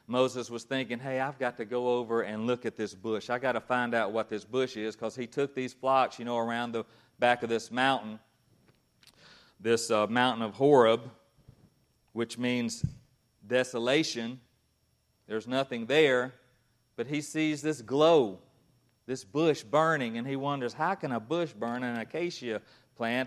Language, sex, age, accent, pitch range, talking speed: English, male, 40-59, American, 115-130 Hz, 170 wpm